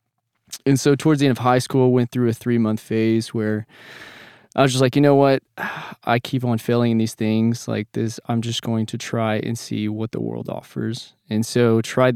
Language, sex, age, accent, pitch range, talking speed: English, male, 20-39, American, 110-125 Hz, 215 wpm